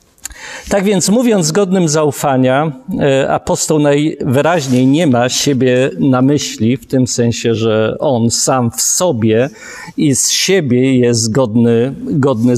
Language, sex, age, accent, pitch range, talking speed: Polish, male, 50-69, native, 125-150 Hz, 130 wpm